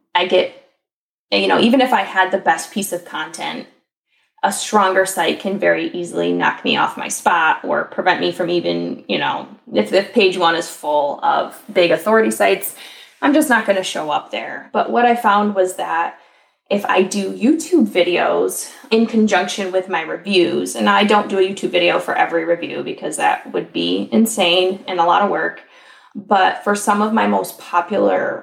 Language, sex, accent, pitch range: English, female, American, 180-240 Hz